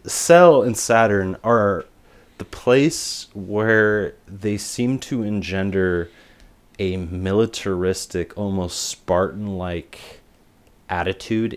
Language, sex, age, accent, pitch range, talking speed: English, male, 30-49, American, 90-110 Hz, 85 wpm